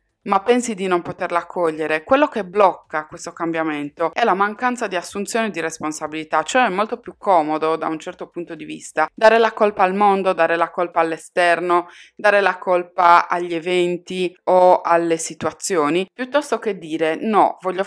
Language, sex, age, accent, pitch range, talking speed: Italian, female, 20-39, native, 160-205 Hz, 170 wpm